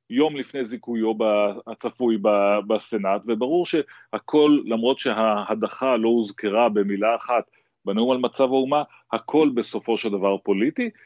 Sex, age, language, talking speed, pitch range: male, 30-49, Hebrew, 120 wpm, 105-120 Hz